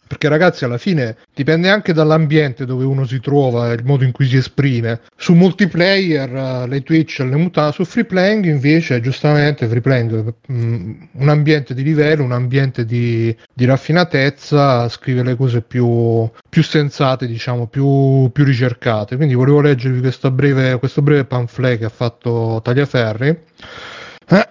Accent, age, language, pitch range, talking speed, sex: native, 30-49, Italian, 125-155 Hz, 150 wpm, male